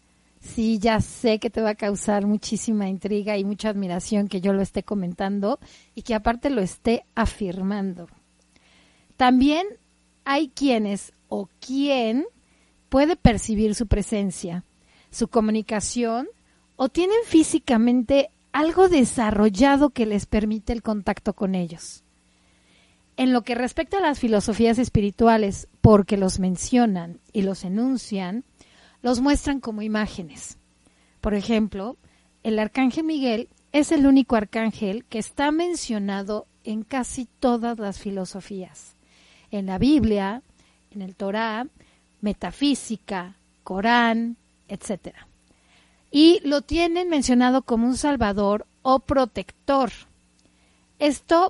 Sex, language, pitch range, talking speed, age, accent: female, Spanish, 195-255 Hz, 120 wpm, 40-59, Mexican